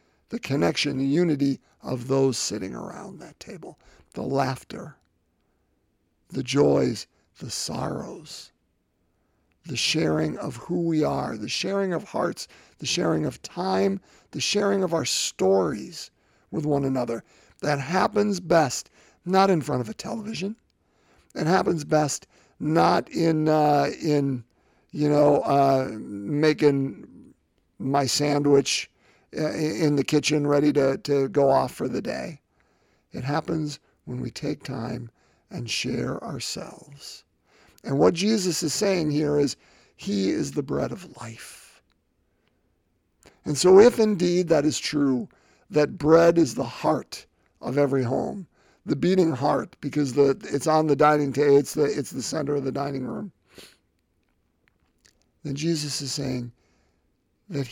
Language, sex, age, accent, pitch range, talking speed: English, male, 50-69, American, 120-155 Hz, 135 wpm